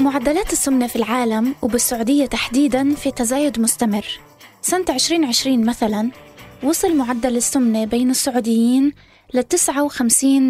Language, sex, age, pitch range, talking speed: Arabic, female, 20-39, 235-285 Hz, 110 wpm